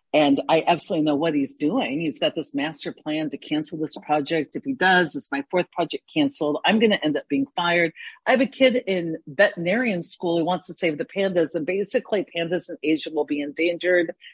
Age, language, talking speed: 40-59, English, 220 wpm